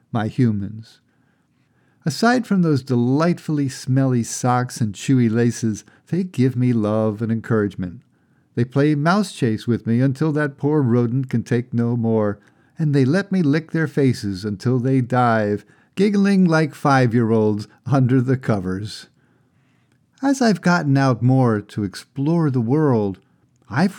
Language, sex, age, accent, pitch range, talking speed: English, male, 50-69, American, 115-150 Hz, 145 wpm